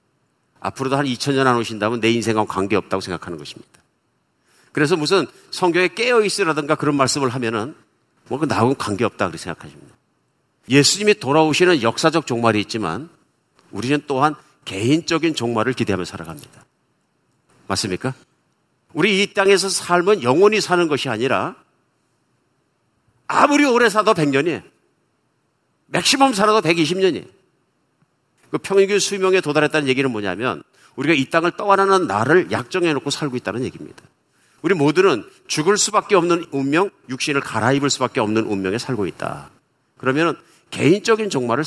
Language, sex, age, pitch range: Korean, male, 50-69, 125-190 Hz